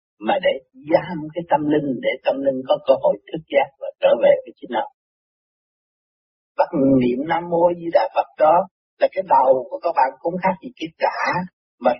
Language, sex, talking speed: Vietnamese, male, 200 wpm